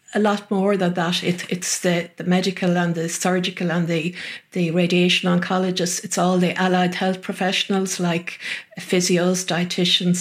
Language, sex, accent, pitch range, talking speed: English, female, Irish, 175-200 Hz, 160 wpm